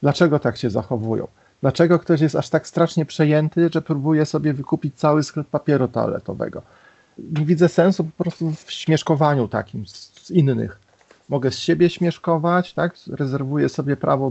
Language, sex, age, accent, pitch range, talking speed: Polish, male, 40-59, native, 145-180 Hz, 155 wpm